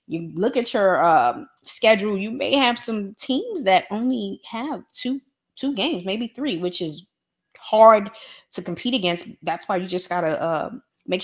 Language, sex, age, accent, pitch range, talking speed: English, female, 30-49, American, 170-220 Hz, 175 wpm